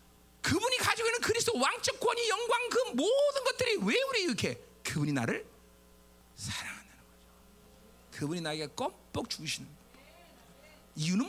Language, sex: Korean, male